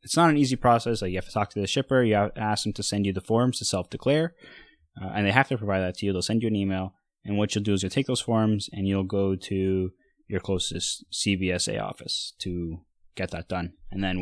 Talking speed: 260 wpm